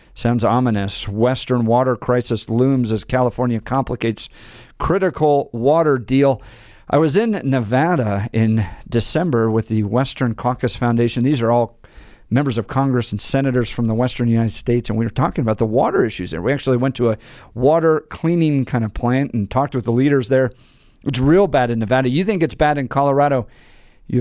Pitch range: 115-145 Hz